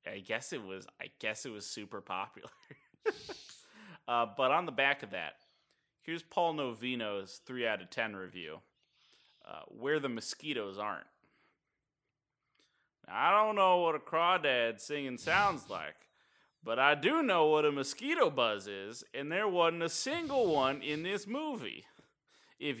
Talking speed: 155 wpm